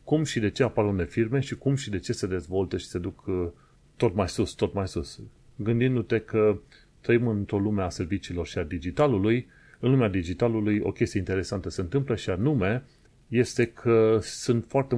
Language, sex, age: Romanian, male, 30-49